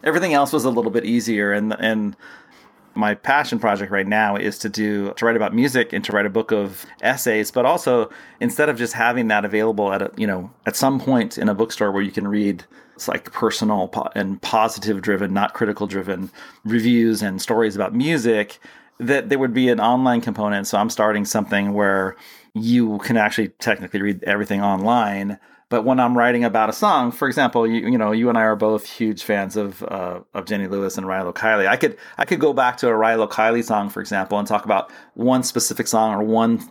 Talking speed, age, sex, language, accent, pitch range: 215 wpm, 30-49, male, English, American, 100-120 Hz